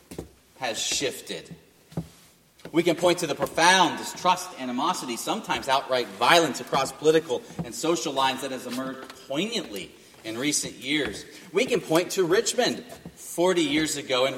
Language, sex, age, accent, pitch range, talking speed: English, male, 30-49, American, 140-175 Hz, 140 wpm